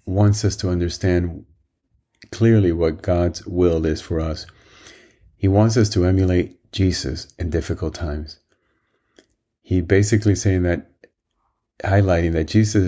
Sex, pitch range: male, 85-105 Hz